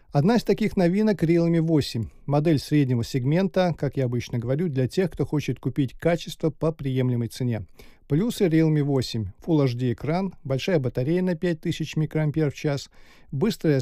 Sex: male